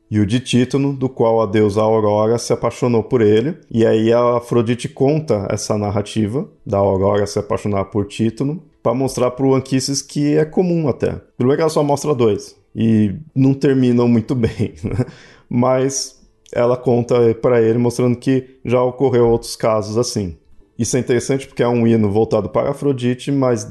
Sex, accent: male, Brazilian